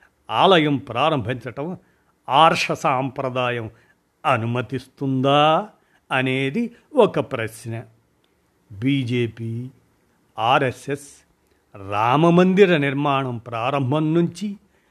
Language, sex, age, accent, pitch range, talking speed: Telugu, male, 50-69, native, 130-170 Hz, 55 wpm